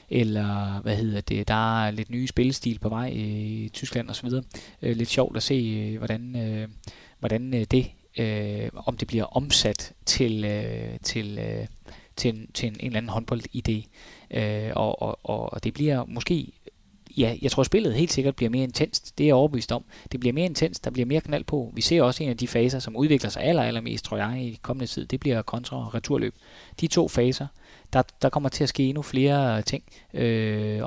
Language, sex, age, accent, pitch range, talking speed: Danish, male, 20-39, native, 110-130 Hz, 190 wpm